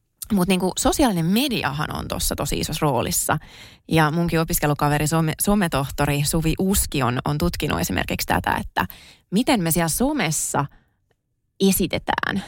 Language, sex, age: Finnish, female, 20-39